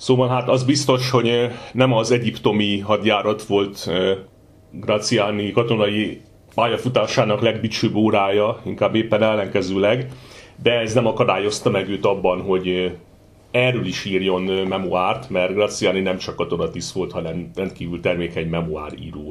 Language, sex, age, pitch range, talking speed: Hungarian, male, 40-59, 95-120 Hz, 125 wpm